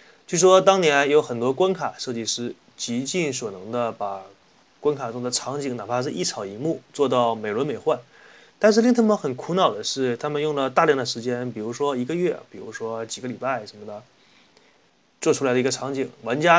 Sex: male